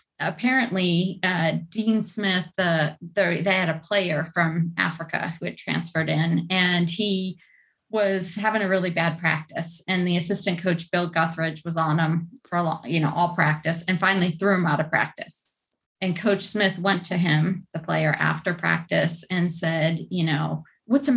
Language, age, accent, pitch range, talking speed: English, 30-49, American, 165-190 Hz, 175 wpm